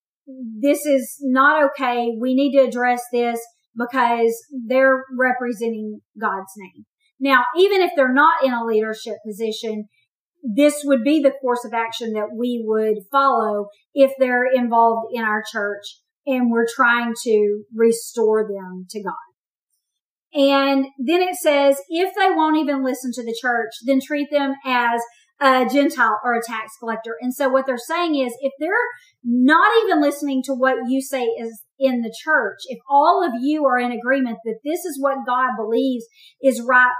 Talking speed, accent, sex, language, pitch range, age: 170 wpm, American, female, English, 230-275 Hz, 40-59